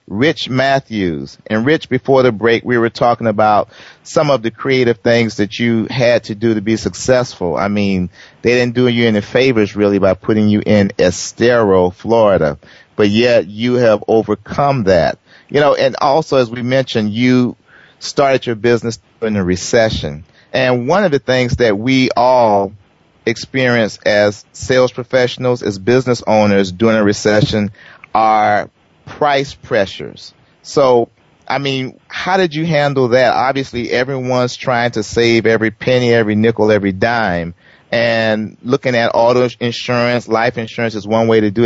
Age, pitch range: 40-59, 110-130 Hz